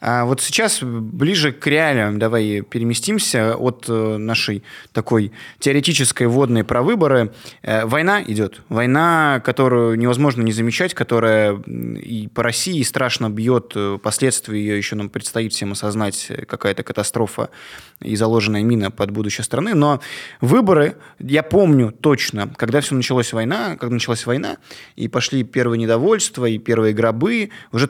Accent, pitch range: native, 110-135 Hz